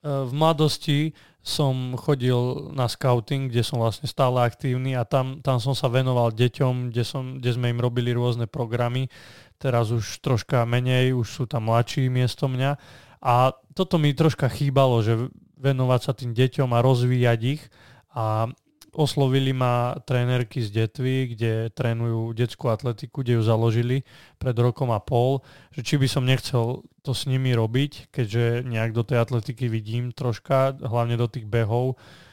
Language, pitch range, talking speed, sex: Slovak, 120-140 Hz, 160 wpm, male